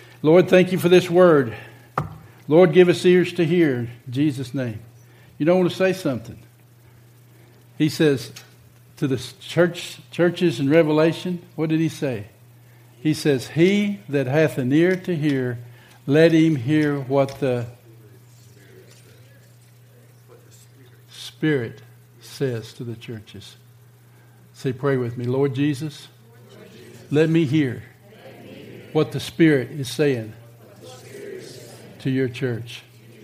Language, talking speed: English, 125 wpm